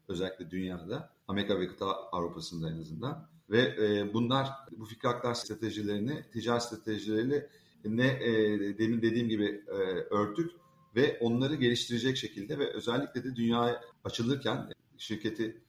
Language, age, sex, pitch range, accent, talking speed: Turkish, 40-59, male, 105-120 Hz, native, 130 wpm